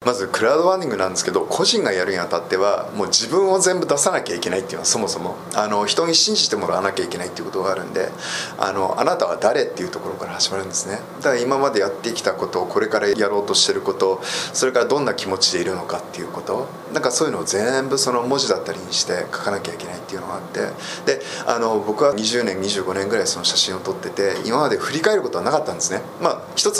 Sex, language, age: male, Japanese, 20-39